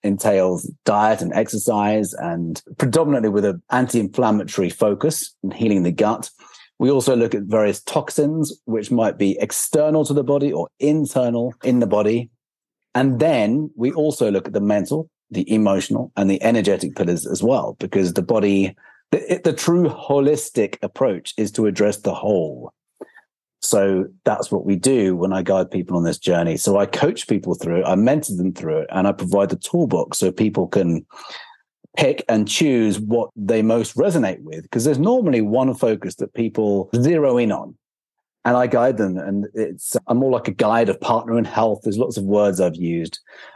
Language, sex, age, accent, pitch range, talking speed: English, male, 40-59, British, 100-130 Hz, 180 wpm